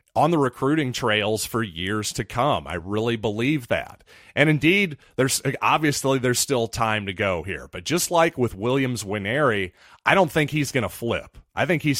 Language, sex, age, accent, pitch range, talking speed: English, male, 30-49, American, 105-140 Hz, 190 wpm